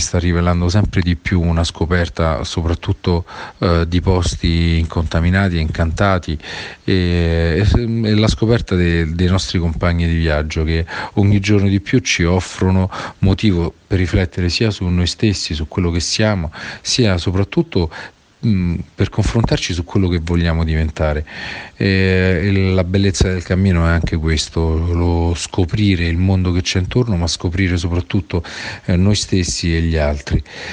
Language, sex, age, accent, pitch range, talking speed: Italian, male, 40-59, native, 85-100 Hz, 145 wpm